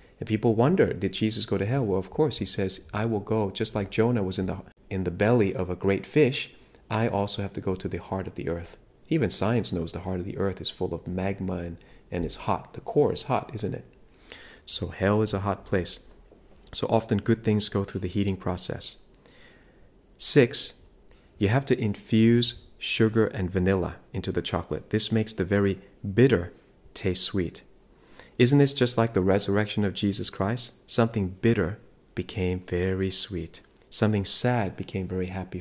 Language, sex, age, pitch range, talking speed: English, male, 30-49, 95-115 Hz, 190 wpm